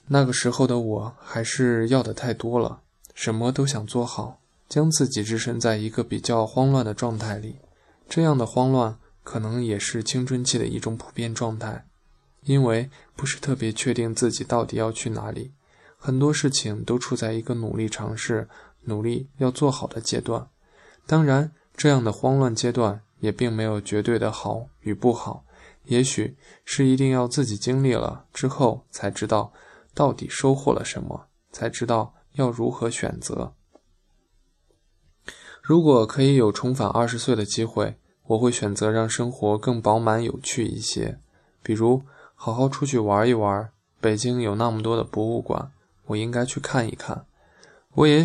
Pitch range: 110-130 Hz